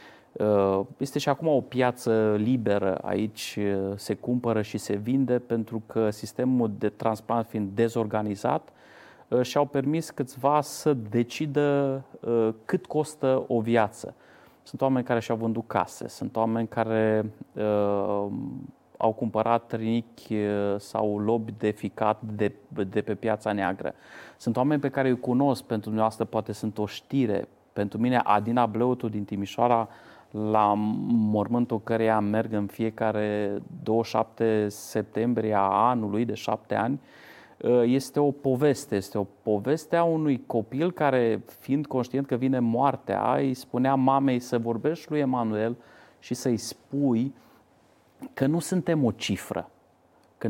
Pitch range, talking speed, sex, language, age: 110-130 Hz, 135 wpm, male, Romanian, 30-49